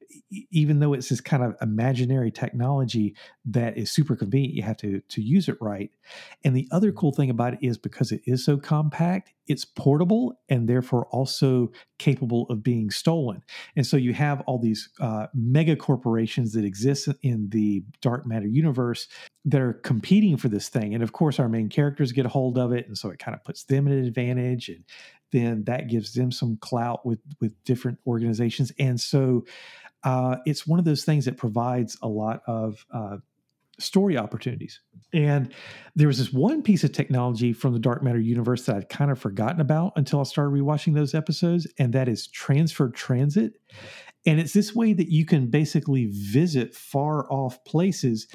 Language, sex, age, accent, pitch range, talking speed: English, male, 50-69, American, 120-150 Hz, 190 wpm